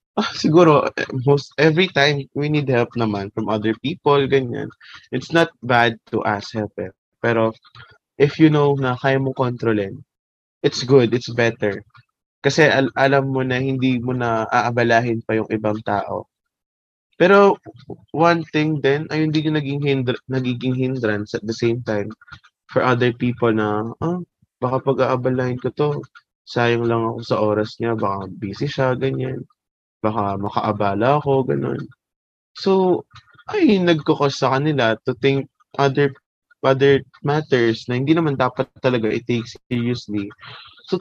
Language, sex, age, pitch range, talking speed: Filipino, male, 20-39, 115-145 Hz, 145 wpm